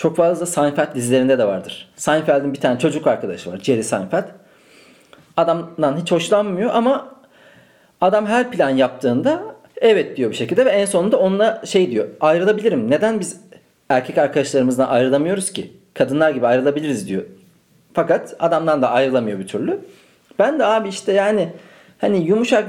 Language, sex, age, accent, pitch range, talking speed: Turkish, male, 40-59, native, 155-215 Hz, 150 wpm